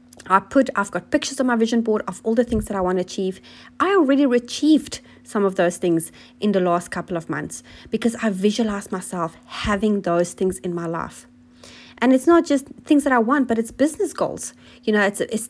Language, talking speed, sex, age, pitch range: English, 220 wpm, female, 30-49, 180-240 Hz